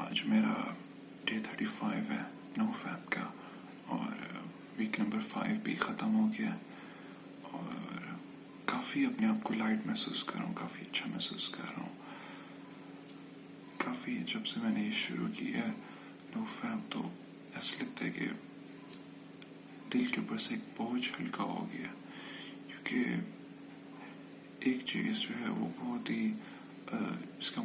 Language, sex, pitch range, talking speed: English, male, 220-255 Hz, 115 wpm